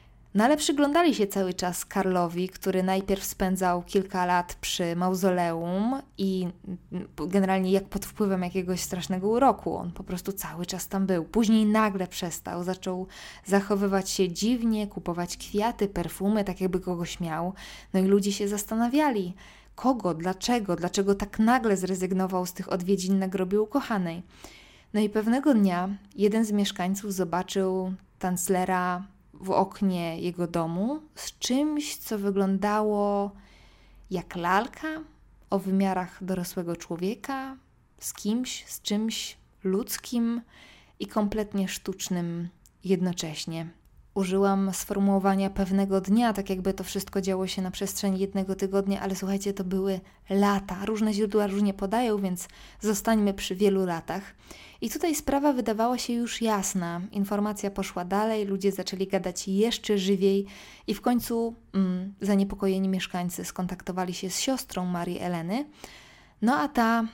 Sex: female